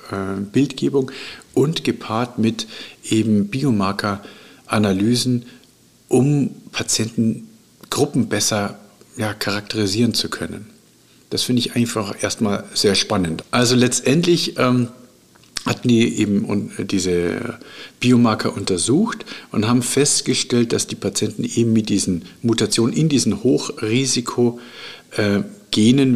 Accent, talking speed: German, 95 wpm